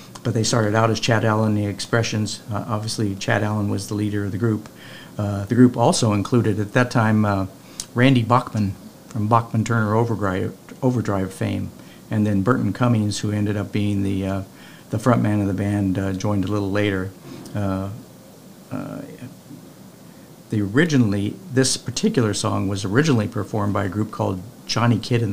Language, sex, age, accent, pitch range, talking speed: English, male, 50-69, American, 100-115 Hz, 175 wpm